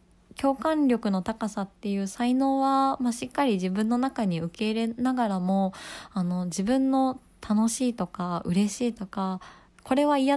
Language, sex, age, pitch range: Japanese, female, 20-39, 180-240 Hz